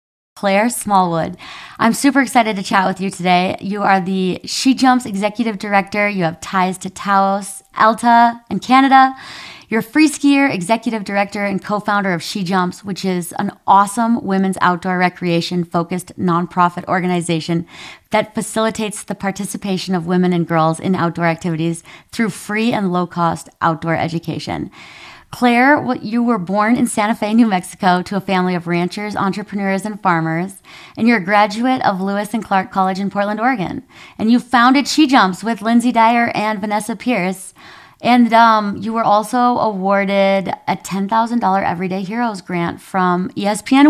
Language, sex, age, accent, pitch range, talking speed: English, female, 30-49, American, 185-235 Hz, 160 wpm